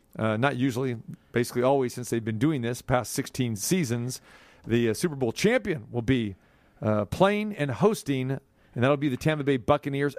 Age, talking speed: 40-59, 190 wpm